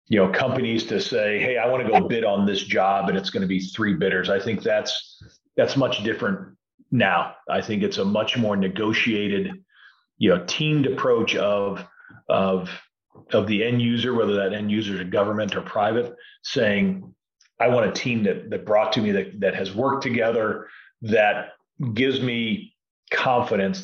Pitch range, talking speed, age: 100-135 Hz, 185 wpm, 40-59